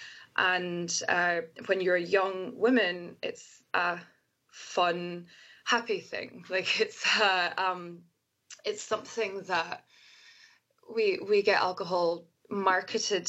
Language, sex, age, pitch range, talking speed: English, female, 20-39, 175-240 Hz, 110 wpm